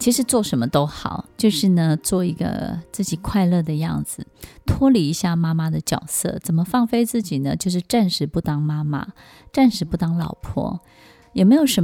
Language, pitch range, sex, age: Chinese, 160-215 Hz, female, 20-39